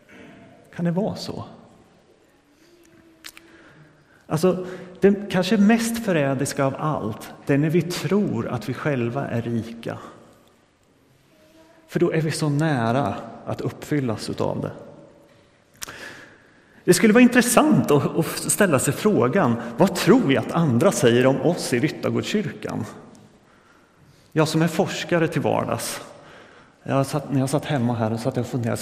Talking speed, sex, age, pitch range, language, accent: 135 wpm, male, 30-49, 125-170 Hz, Swedish, native